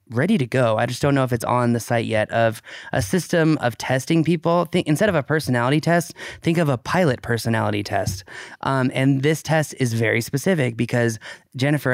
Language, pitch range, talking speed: English, 125-165 Hz, 195 wpm